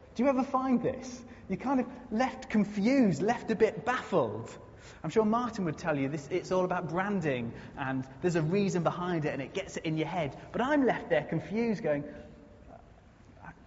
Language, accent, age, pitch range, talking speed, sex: English, British, 30-49, 130-220 Hz, 200 wpm, male